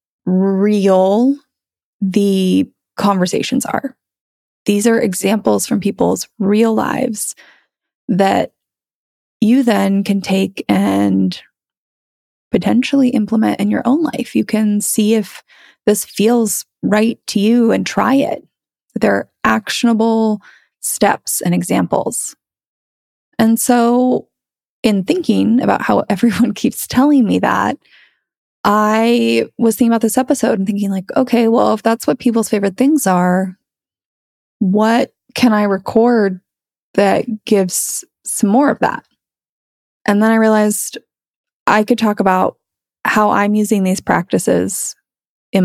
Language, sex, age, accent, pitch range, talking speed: English, female, 20-39, American, 195-240 Hz, 120 wpm